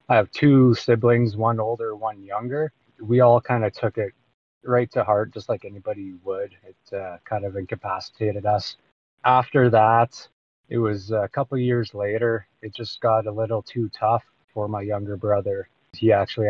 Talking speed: 180 wpm